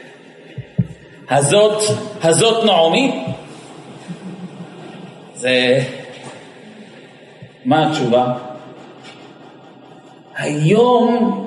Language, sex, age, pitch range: Hebrew, male, 50-69, 175-275 Hz